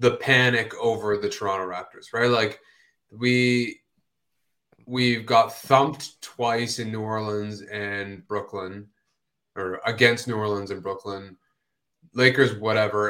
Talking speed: 120 wpm